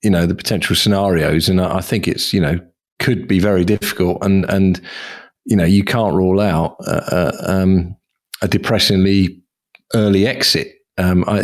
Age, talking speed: 40-59, 170 wpm